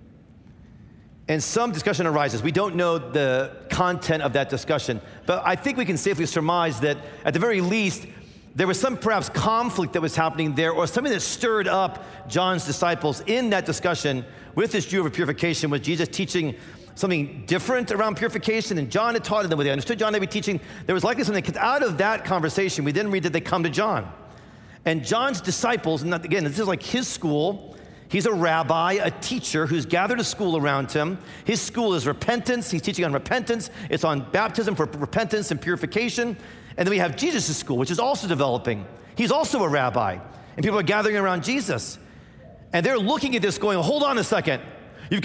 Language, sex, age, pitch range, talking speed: English, male, 40-59, 160-225 Hz, 200 wpm